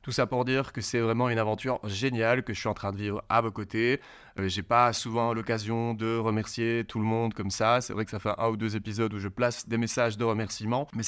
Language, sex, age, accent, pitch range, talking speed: French, male, 20-39, French, 110-120 Hz, 265 wpm